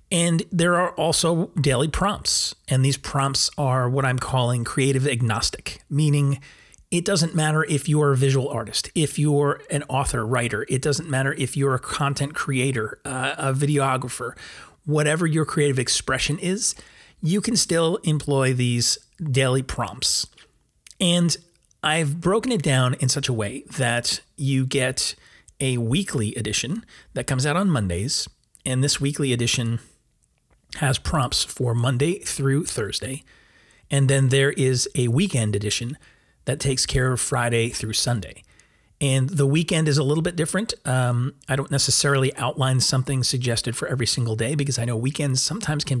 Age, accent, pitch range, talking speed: 30-49, American, 125-150 Hz, 160 wpm